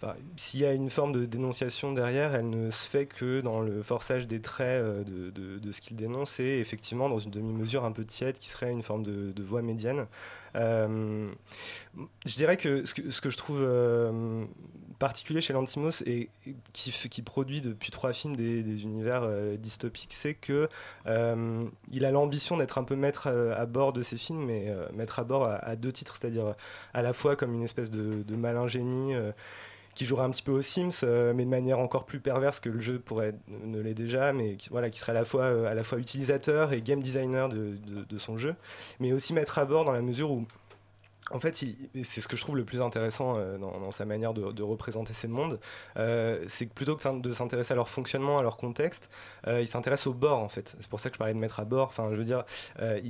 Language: French